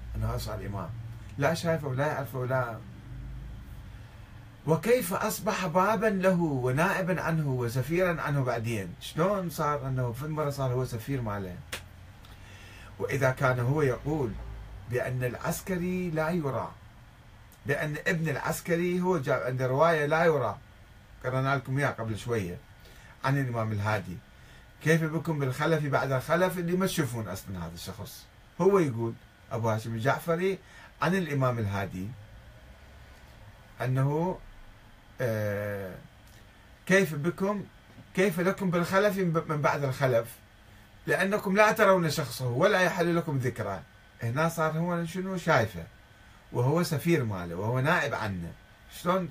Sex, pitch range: male, 110-165 Hz